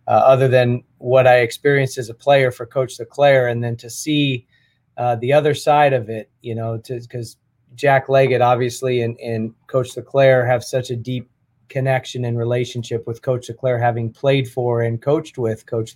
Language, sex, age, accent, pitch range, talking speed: English, male, 30-49, American, 120-135 Hz, 185 wpm